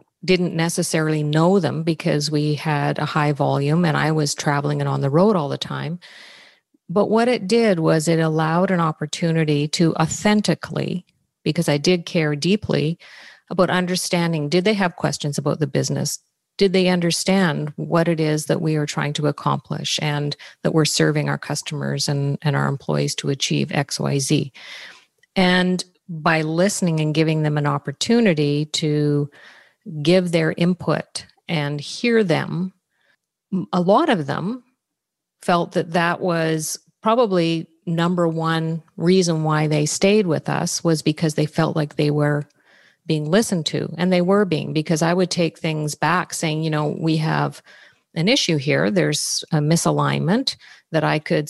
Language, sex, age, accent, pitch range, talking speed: English, female, 50-69, American, 150-180 Hz, 160 wpm